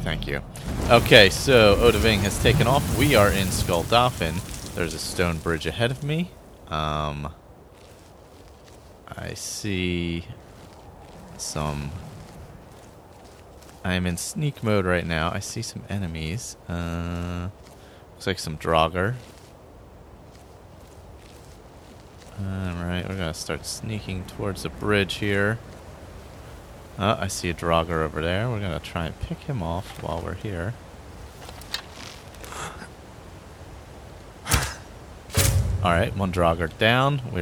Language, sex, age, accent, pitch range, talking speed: English, male, 30-49, American, 85-105 Hz, 115 wpm